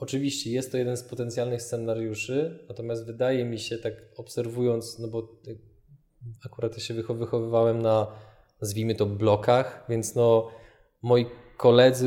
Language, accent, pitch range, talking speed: Polish, native, 115-125 Hz, 130 wpm